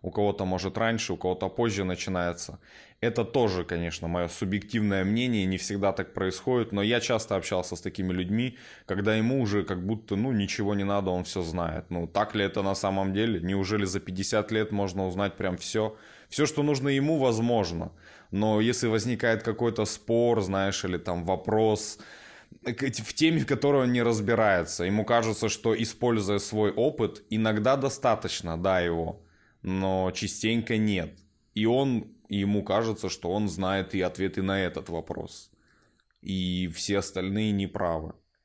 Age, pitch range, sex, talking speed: 20-39, 95-115 Hz, male, 160 wpm